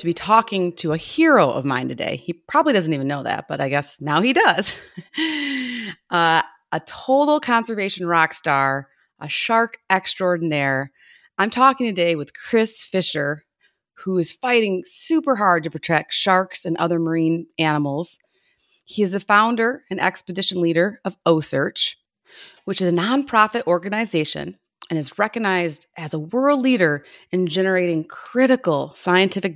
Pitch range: 165-230 Hz